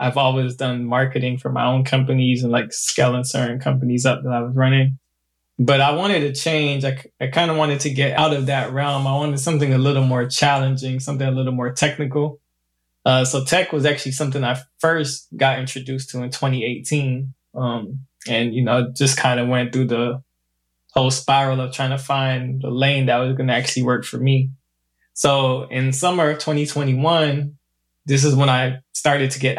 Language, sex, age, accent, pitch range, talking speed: English, male, 20-39, American, 125-145 Hz, 195 wpm